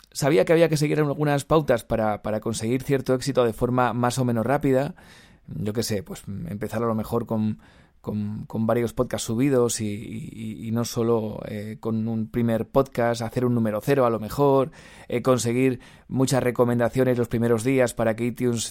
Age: 20-39